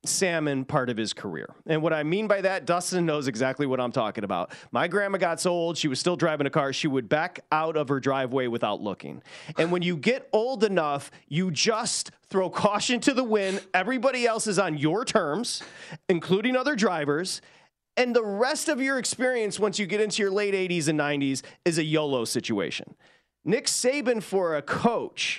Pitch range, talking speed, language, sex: 150-210 Hz, 200 wpm, English, male